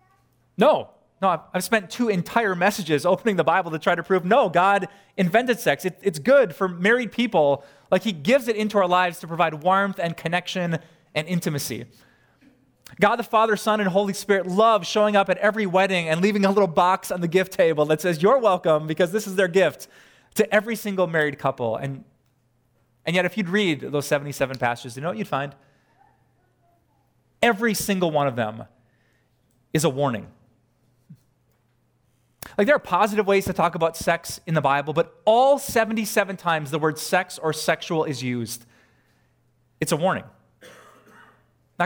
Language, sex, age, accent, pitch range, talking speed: English, male, 20-39, American, 140-195 Hz, 175 wpm